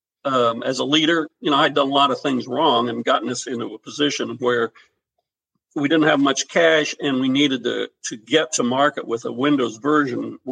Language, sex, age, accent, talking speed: English, male, 60-79, American, 210 wpm